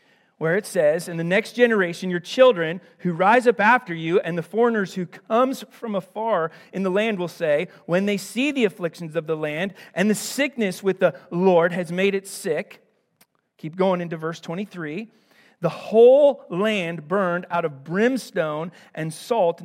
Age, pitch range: 40-59, 150-190 Hz